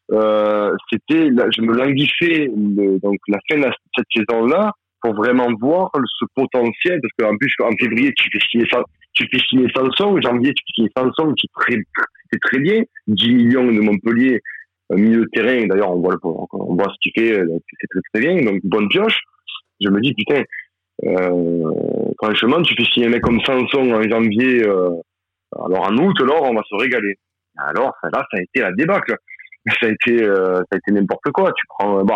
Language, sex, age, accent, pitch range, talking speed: French, male, 30-49, French, 100-125 Hz, 205 wpm